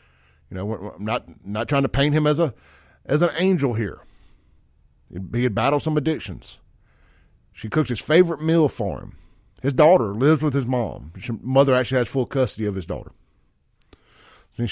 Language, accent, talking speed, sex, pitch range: English, American, 180 wpm, male, 100-140 Hz